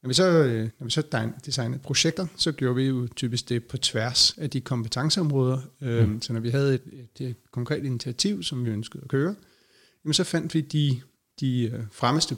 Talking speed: 160 wpm